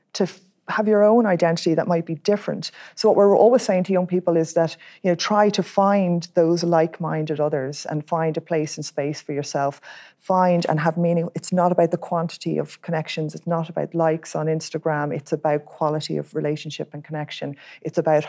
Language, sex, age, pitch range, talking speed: English, female, 30-49, 155-180 Hz, 200 wpm